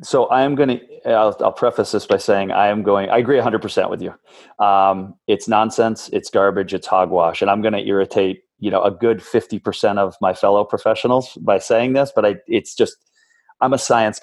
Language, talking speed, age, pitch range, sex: English, 205 wpm, 30-49, 100-125 Hz, male